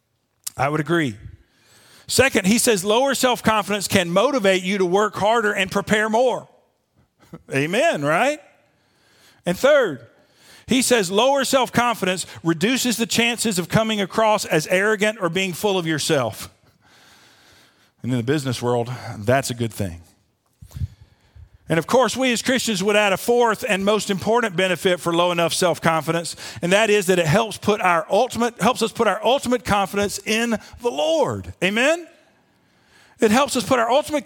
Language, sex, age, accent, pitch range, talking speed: English, male, 50-69, American, 160-230 Hz, 150 wpm